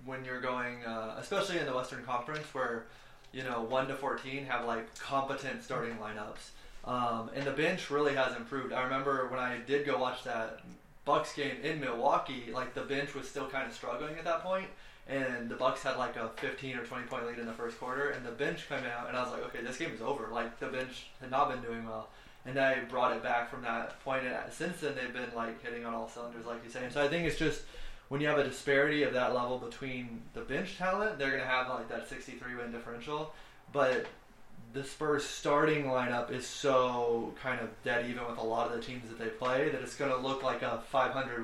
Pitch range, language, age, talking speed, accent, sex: 120-140 Hz, English, 20-39, 235 wpm, American, male